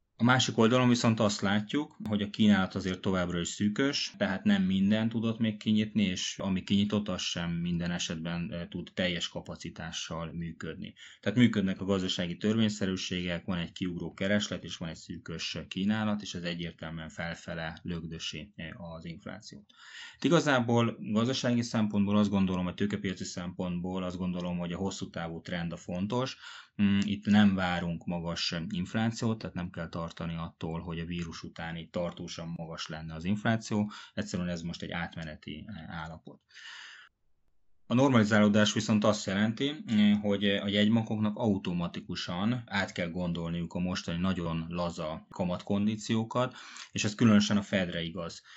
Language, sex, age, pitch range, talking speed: Hungarian, male, 20-39, 85-105 Hz, 145 wpm